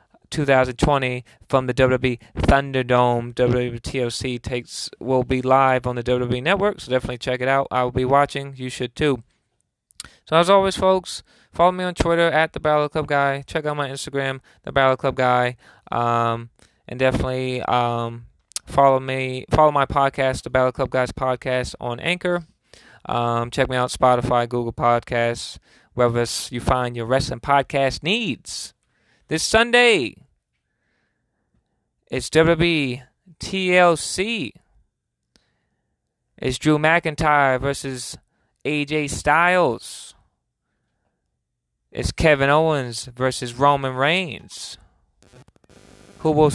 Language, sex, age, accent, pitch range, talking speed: English, male, 20-39, American, 120-145 Hz, 125 wpm